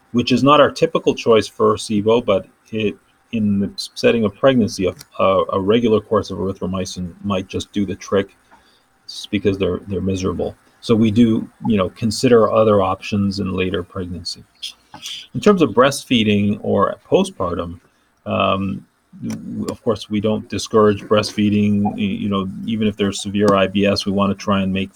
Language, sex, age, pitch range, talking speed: English, male, 40-59, 95-110 Hz, 160 wpm